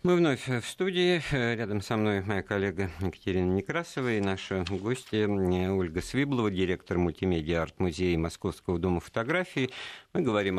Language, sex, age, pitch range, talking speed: Russian, male, 50-69, 90-130 Hz, 130 wpm